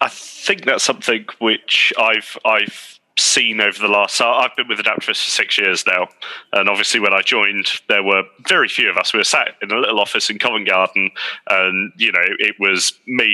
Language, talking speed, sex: English, 210 wpm, male